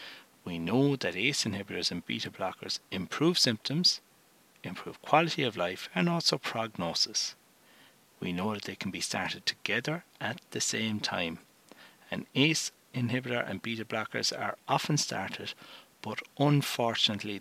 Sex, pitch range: male, 105-135 Hz